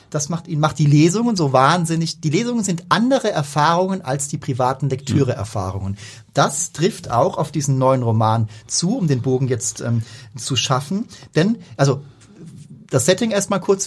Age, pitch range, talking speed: 30-49, 120-155 Hz, 160 wpm